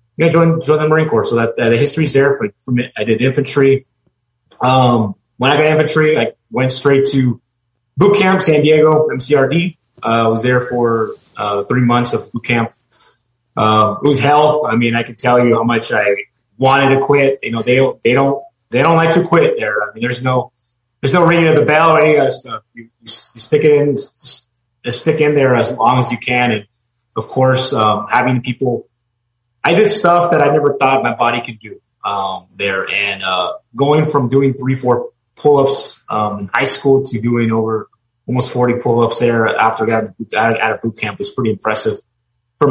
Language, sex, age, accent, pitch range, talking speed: English, male, 30-49, American, 115-140 Hz, 210 wpm